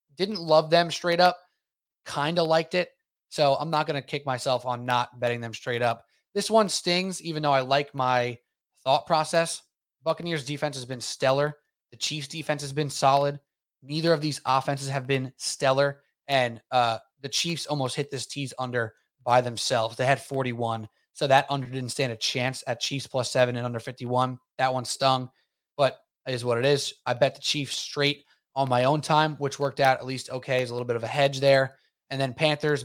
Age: 20-39